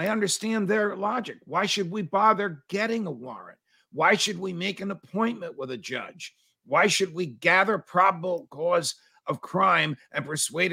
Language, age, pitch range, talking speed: English, 50-69, 155-205 Hz, 170 wpm